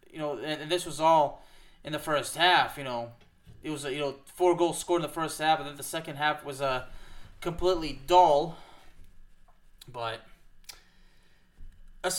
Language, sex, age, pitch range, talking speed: English, male, 20-39, 140-180 Hz, 170 wpm